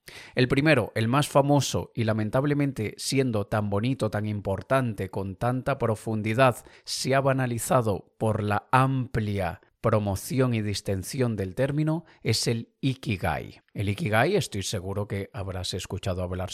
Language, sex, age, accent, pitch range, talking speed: Spanish, male, 30-49, Spanish, 100-125 Hz, 135 wpm